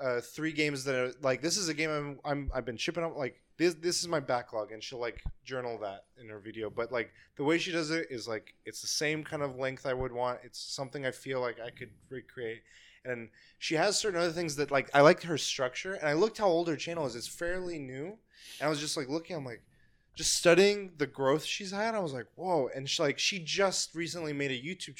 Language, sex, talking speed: English, male, 255 wpm